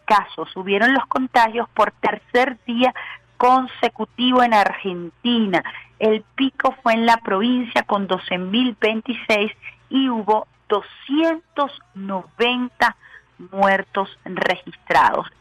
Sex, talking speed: female, 85 wpm